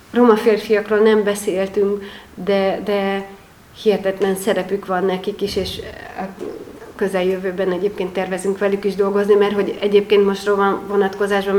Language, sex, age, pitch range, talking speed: Hungarian, female, 30-49, 180-200 Hz, 125 wpm